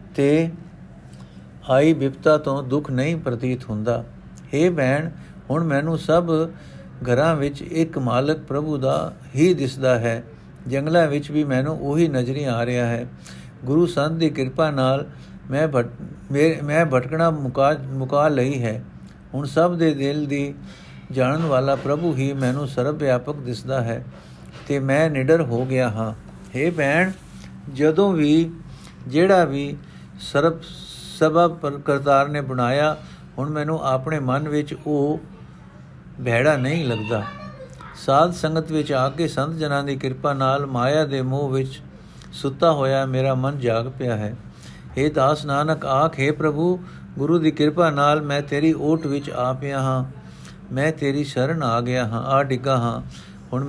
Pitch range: 125-155 Hz